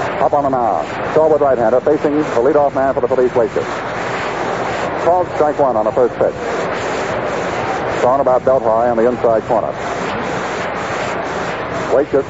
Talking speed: 145 wpm